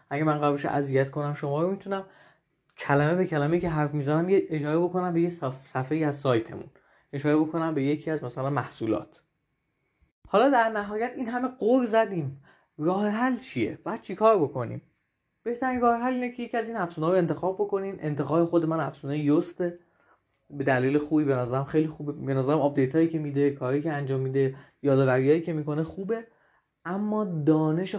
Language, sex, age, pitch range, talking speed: Persian, male, 20-39, 135-185 Hz, 175 wpm